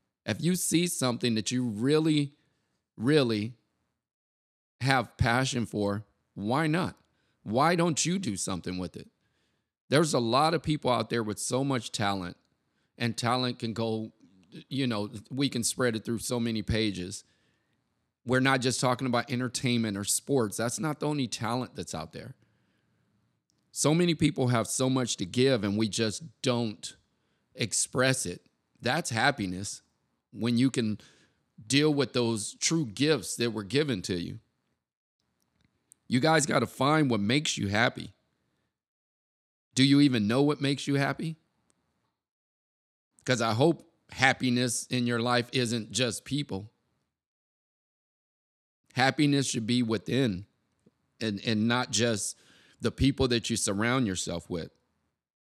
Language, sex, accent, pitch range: English, male, American, 110-135 Hz